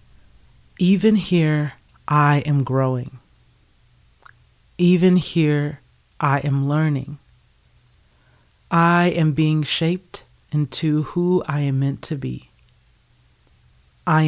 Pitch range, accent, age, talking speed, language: 120-155 Hz, American, 40-59, 95 wpm, English